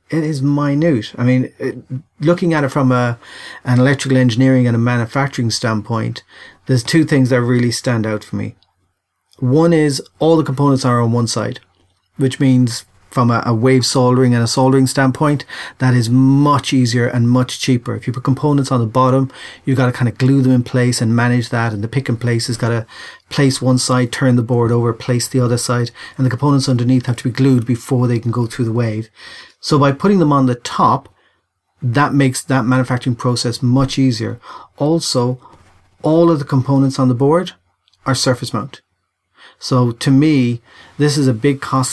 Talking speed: 195 wpm